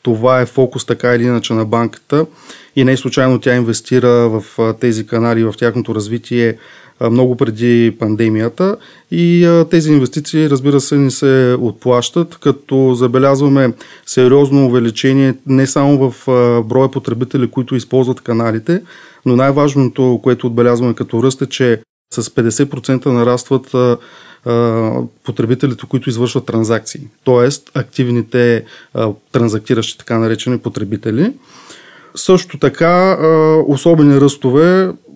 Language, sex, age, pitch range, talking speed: Bulgarian, male, 20-39, 120-140 Hz, 115 wpm